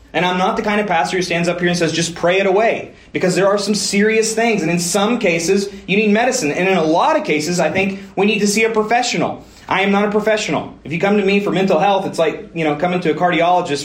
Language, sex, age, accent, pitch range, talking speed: English, male, 30-49, American, 165-210 Hz, 280 wpm